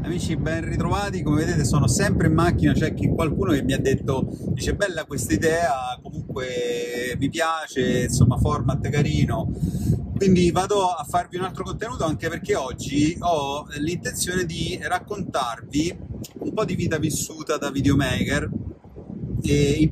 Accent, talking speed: native, 150 wpm